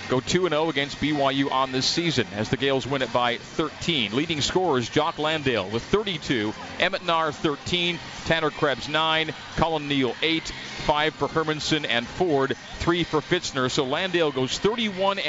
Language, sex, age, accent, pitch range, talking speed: English, male, 50-69, American, 135-170 Hz, 160 wpm